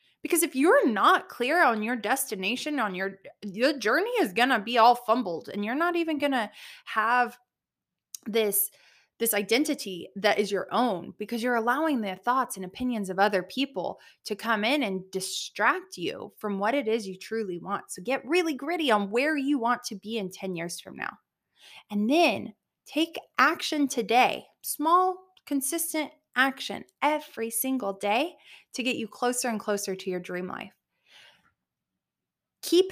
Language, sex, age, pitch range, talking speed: English, female, 20-39, 200-280 Hz, 170 wpm